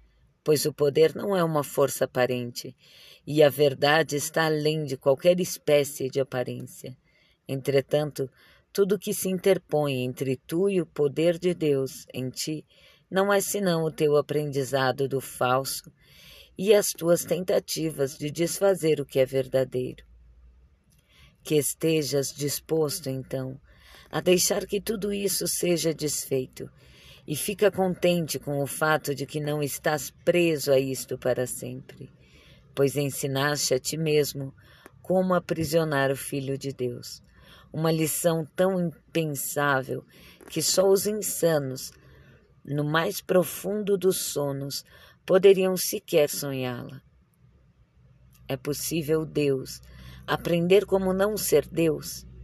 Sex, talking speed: female, 125 wpm